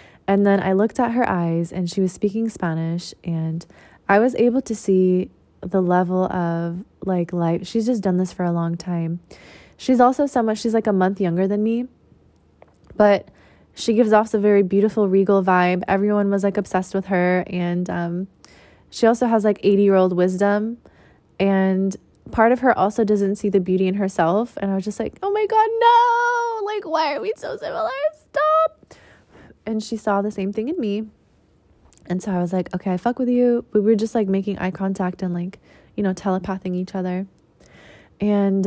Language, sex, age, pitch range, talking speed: English, female, 20-39, 185-220 Hz, 195 wpm